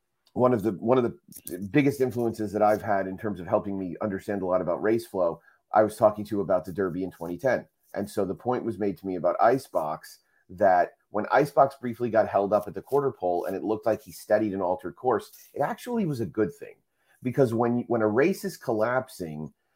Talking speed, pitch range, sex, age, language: 225 wpm, 95-120 Hz, male, 30-49, English